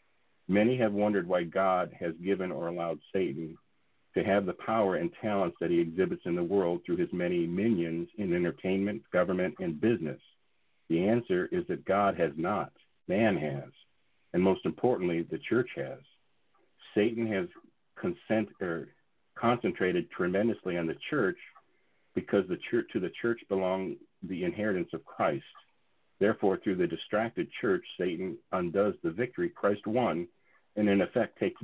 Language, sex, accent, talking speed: English, male, American, 150 wpm